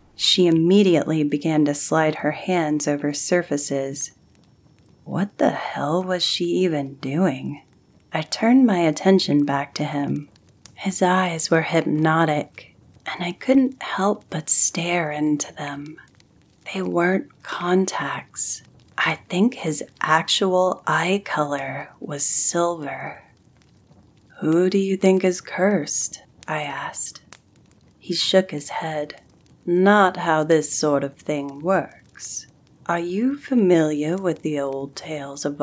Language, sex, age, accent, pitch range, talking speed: English, female, 30-49, American, 145-180 Hz, 125 wpm